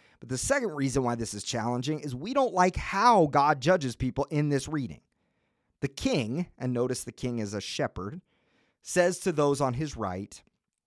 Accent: American